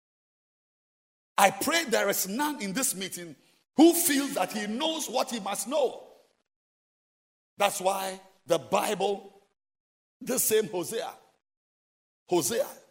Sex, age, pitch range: male, 50-69, 165-230 Hz